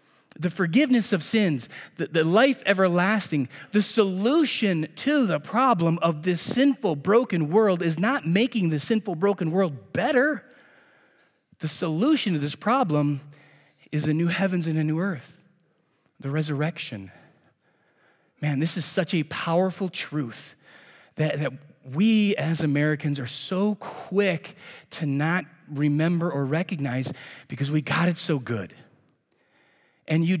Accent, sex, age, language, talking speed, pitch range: American, male, 30-49, English, 135 wpm, 145-185 Hz